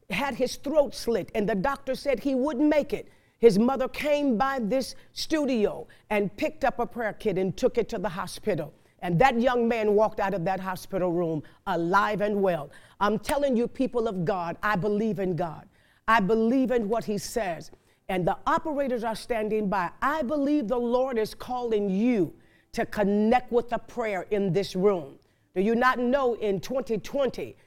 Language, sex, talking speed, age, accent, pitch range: English, female, 185 wpm, 50-69, American, 200-260 Hz